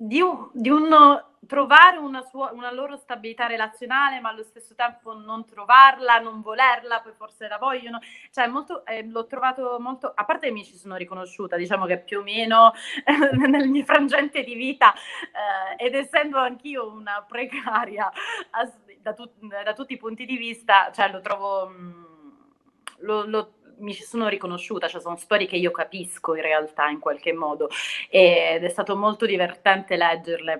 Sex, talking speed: female, 175 wpm